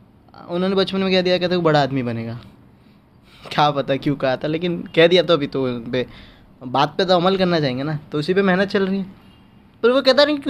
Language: Hindi